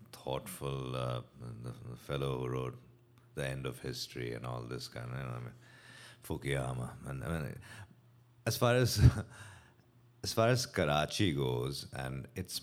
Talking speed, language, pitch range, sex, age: 145 wpm, English, 65-100 Hz, male, 50-69